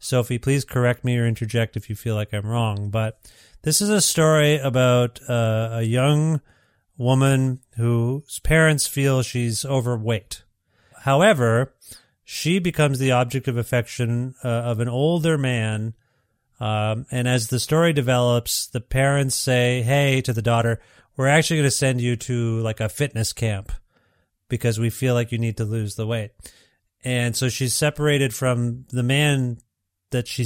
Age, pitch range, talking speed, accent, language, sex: 40-59, 115-140 Hz, 160 wpm, American, English, male